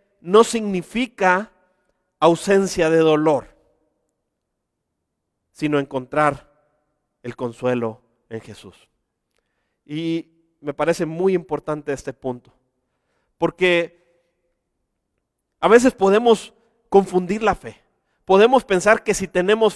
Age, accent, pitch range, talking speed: 40-59, Mexican, 170-240 Hz, 90 wpm